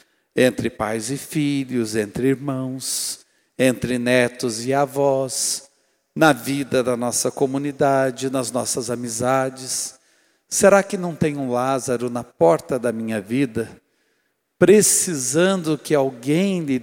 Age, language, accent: 60-79, Portuguese, Brazilian